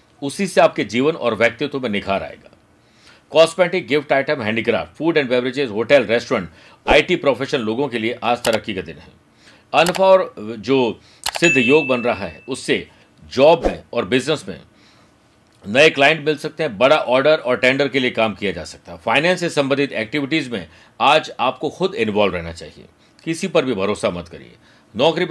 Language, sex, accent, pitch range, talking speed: Hindi, male, native, 115-155 Hz, 185 wpm